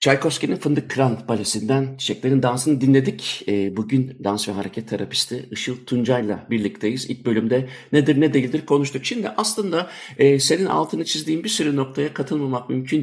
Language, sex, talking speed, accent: Turkish, male, 145 wpm, native